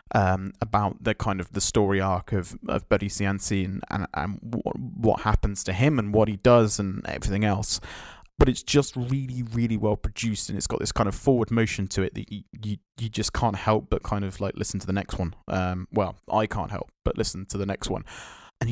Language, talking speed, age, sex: English, 230 wpm, 20-39, male